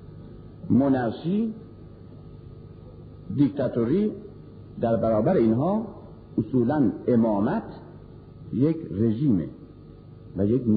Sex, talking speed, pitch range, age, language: male, 60 wpm, 140-190 Hz, 50-69, Persian